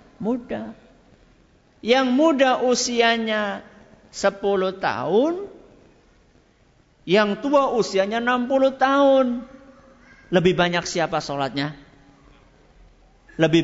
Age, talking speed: 50-69, 70 wpm